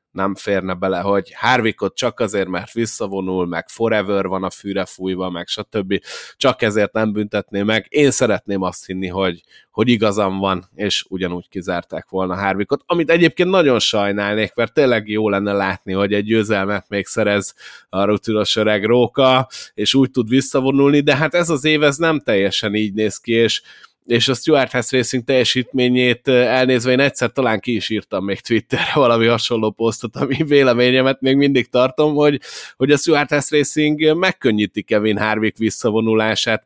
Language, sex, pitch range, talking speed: Hungarian, male, 100-130 Hz, 165 wpm